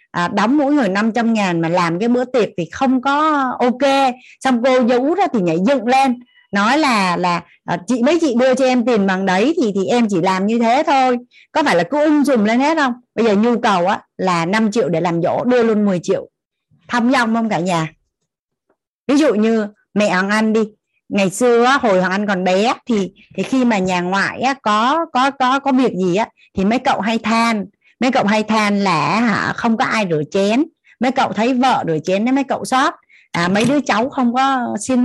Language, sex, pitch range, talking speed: Vietnamese, female, 195-255 Hz, 235 wpm